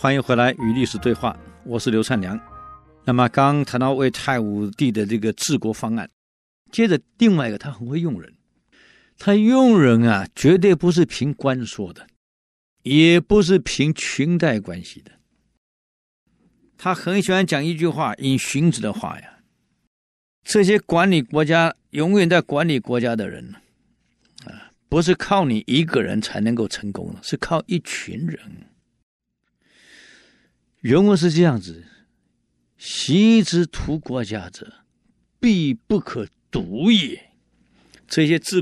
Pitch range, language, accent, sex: 115-180 Hz, Chinese, native, male